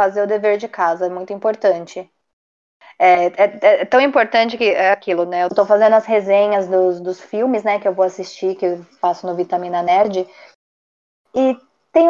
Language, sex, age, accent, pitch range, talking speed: Portuguese, female, 20-39, Brazilian, 200-255 Hz, 190 wpm